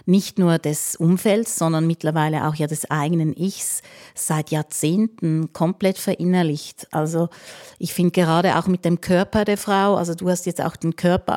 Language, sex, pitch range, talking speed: German, female, 165-195 Hz, 170 wpm